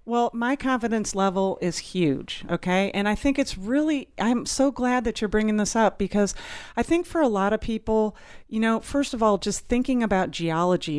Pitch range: 180-230 Hz